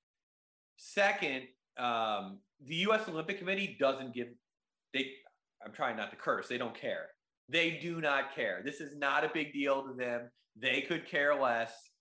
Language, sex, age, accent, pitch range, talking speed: English, male, 30-49, American, 120-160 Hz, 165 wpm